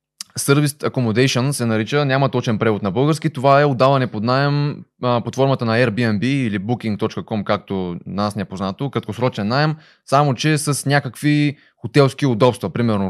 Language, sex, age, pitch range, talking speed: Bulgarian, male, 20-39, 105-140 Hz, 160 wpm